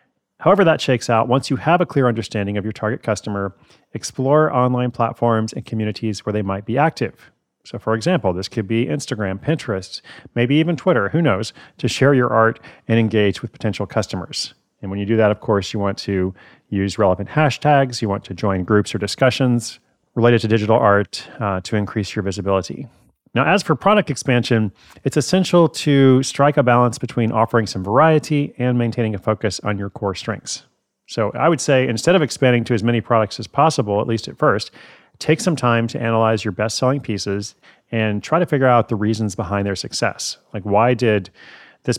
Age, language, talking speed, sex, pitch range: 40-59, English, 195 wpm, male, 105-130 Hz